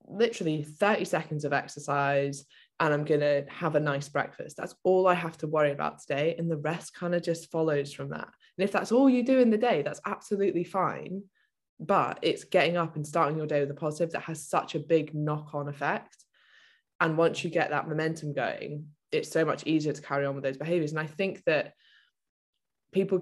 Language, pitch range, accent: English, 145-170 Hz, British